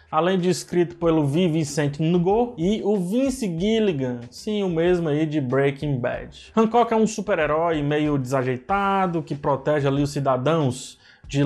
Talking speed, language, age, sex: 155 wpm, Portuguese, 20-39, male